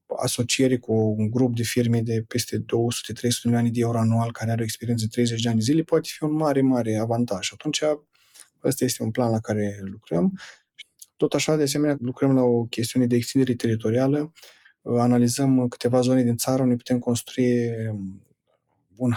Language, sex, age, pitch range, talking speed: Romanian, male, 20-39, 110-130 Hz, 175 wpm